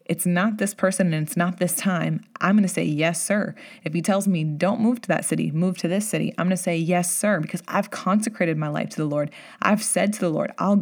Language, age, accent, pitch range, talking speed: English, 20-39, American, 170-210 Hz, 265 wpm